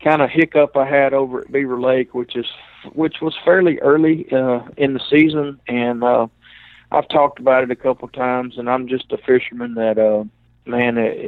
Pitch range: 115-130 Hz